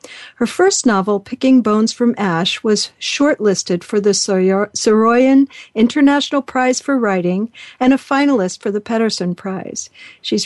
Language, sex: English, female